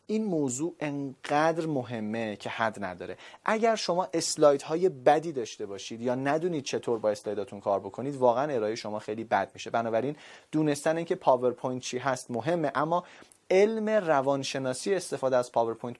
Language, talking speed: Persian, 150 wpm